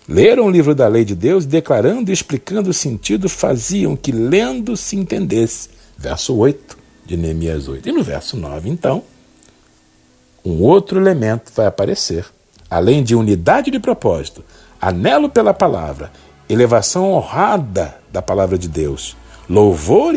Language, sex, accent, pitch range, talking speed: Portuguese, male, Brazilian, 100-150 Hz, 140 wpm